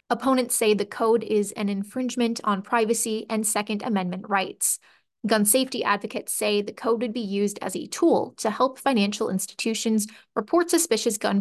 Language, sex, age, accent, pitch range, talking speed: English, female, 20-39, American, 205-235 Hz, 170 wpm